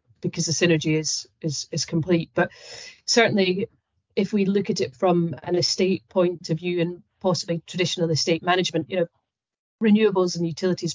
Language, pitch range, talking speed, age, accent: English, 165-185 Hz, 165 wpm, 30-49, British